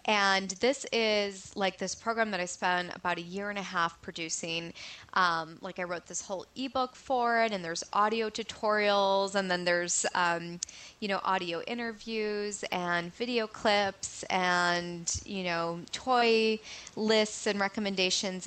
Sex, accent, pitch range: female, American, 175-215 Hz